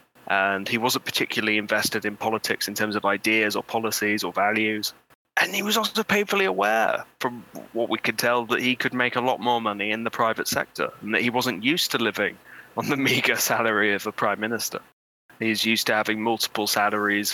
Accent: British